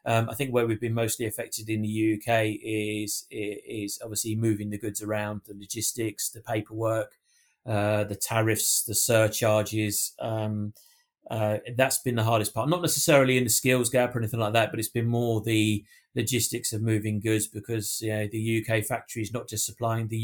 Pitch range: 110-120 Hz